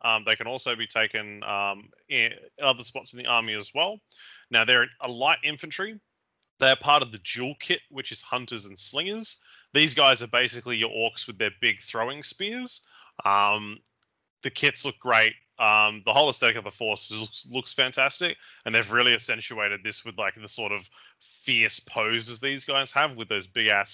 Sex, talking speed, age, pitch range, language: male, 185 wpm, 20-39, 110-145 Hz, English